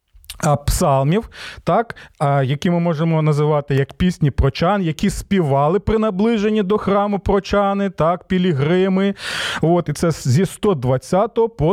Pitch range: 150-225 Hz